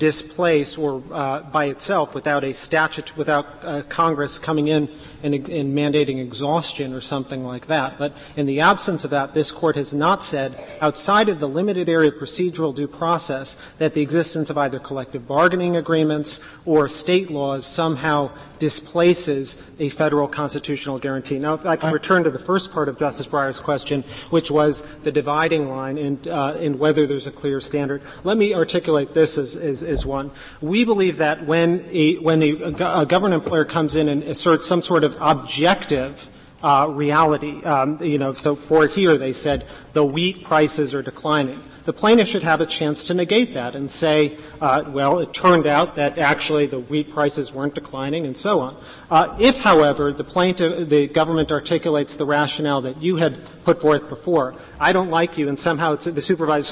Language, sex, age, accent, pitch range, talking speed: English, male, 40-59, American, 145-165 Hz, 185 wpm